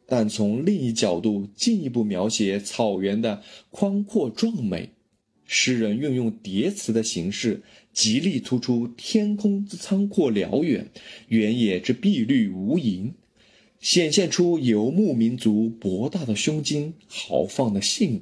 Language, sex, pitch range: Chinese, male, 105-170 Hz